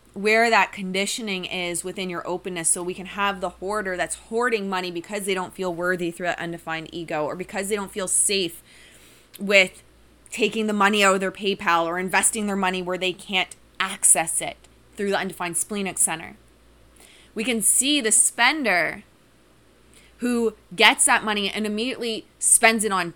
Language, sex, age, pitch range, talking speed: English, female, 20-39, 165-225 Hz, 175 wpm